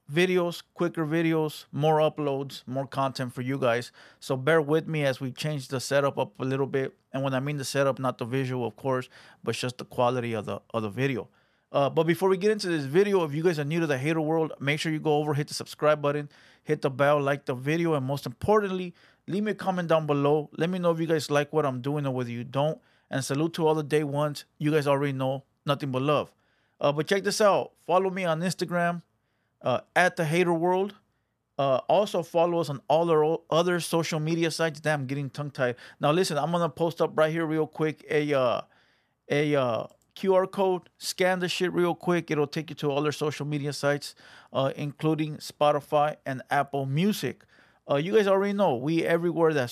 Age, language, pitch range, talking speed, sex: 30-49, English, 135-165 Hz, 225 wpm, male